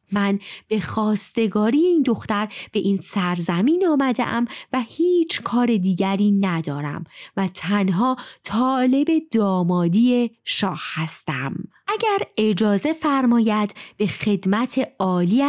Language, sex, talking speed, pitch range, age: Persian, female, 105 wpm, 185-270 Hz, 30-49